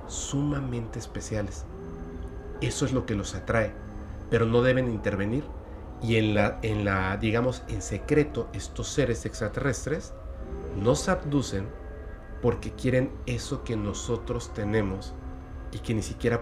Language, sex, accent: Spanish, male, Mexican